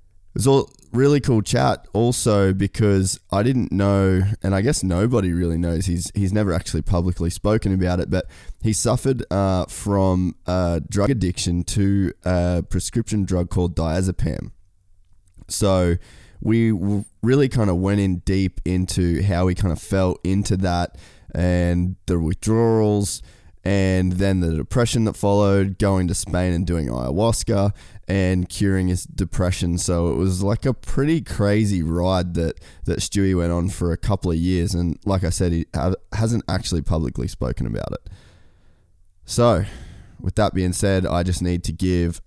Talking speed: 160 wpm